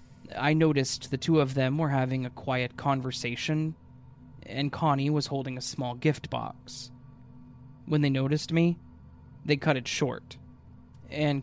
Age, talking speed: 20-39, 145 wpm